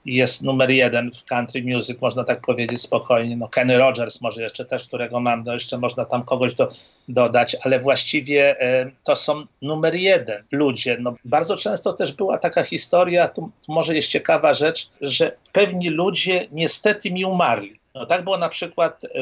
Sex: male